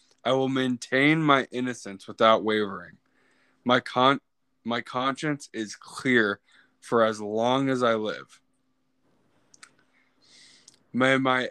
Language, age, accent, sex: English, 20-39, American, male